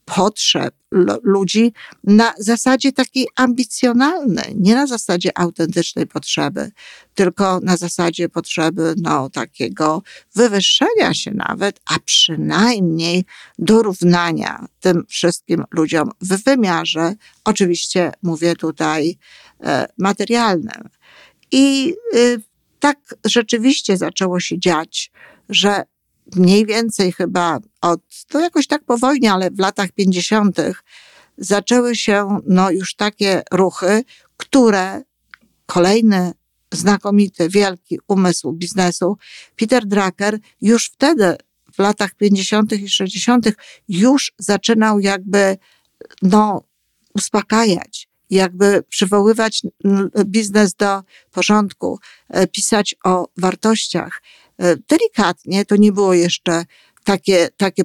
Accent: native